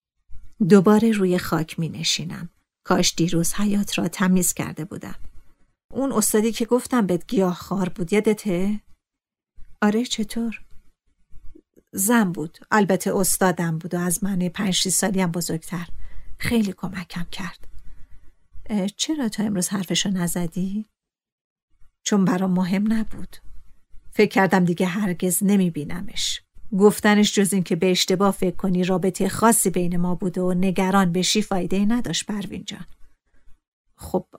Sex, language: female, Persian